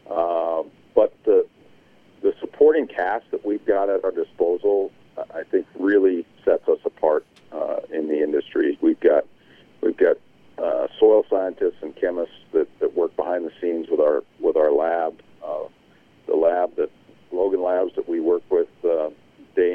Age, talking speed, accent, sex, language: 50-69, 165 wpm, American, male, English